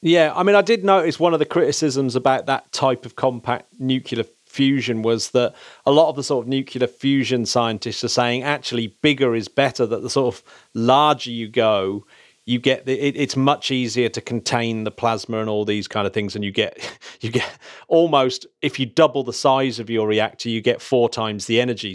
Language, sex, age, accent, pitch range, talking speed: English, male, 40-59, British, 120-155 Hz, 215 wpm